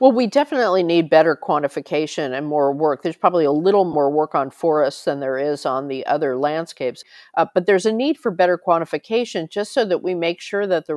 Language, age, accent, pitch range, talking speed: English, 50-69, American, 135-165 Hz, 220 wpm